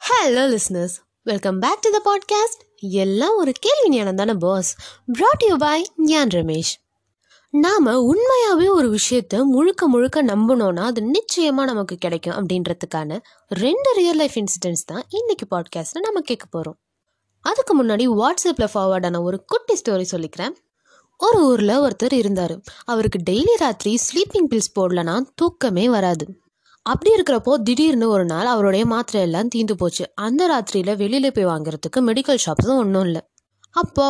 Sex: female